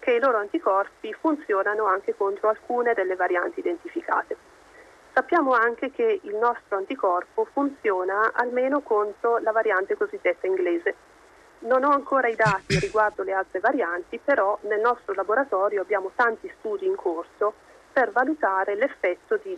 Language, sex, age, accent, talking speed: Italian, female, 40-59, native, 140 wpm